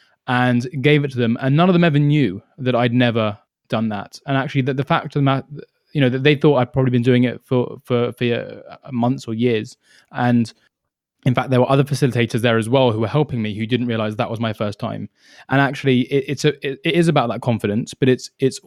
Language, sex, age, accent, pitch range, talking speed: English, male, 20-39, British, 120-140 Hz, 245 wpm